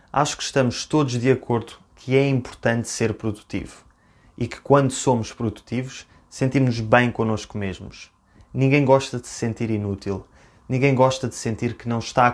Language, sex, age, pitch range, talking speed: Portuguese, male, 20-39, 105-130 Hz, 165 wpm